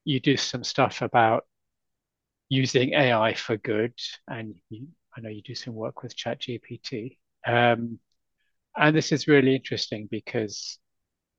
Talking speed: 135 wpm